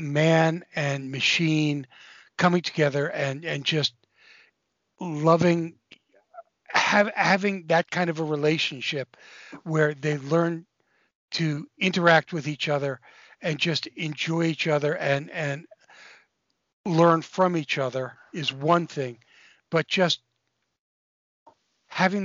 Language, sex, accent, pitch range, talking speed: English, male, American, 135-170 Hz, 110 wpm